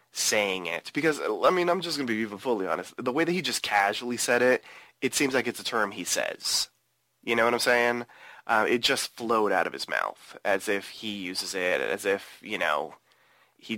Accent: American